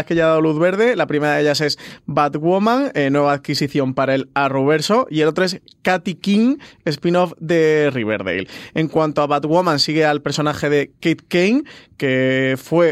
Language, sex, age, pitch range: Spanish, male, 20-39, 145-170 Hz